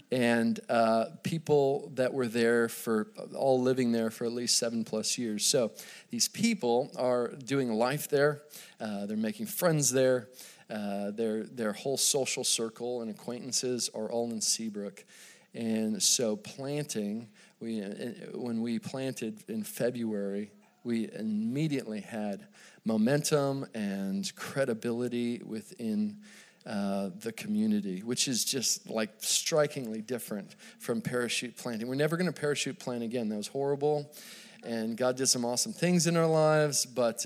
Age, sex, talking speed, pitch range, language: 40-59, male, 140 wpm, 115-145 Hz, English